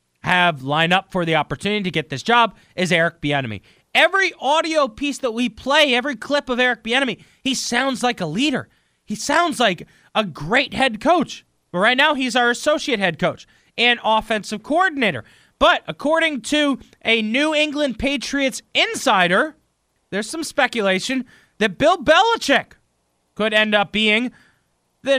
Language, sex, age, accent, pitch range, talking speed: English, male, 20-39, American, 180-255 Hz, 155 wpm